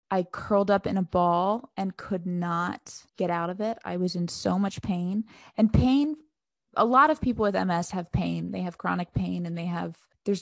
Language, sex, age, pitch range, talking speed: English, female, 20-39, 170-205 Hz, 215 wpm